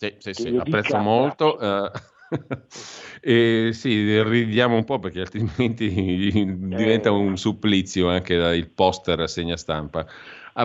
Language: Italian